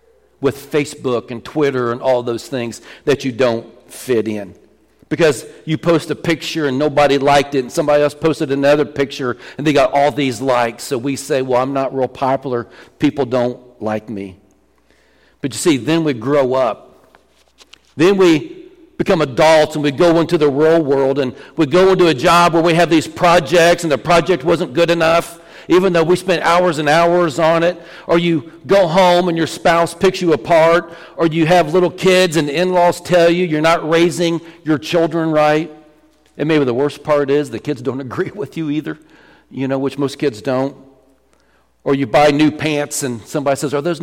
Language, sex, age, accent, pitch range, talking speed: English, male, 40-59, American, 135-170 Hz, 200 wpm